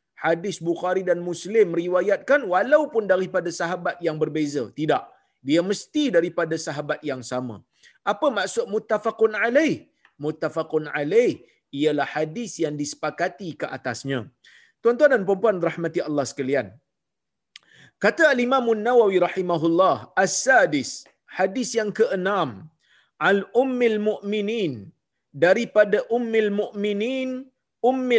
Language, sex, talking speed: Malayalam, male, 105 wpm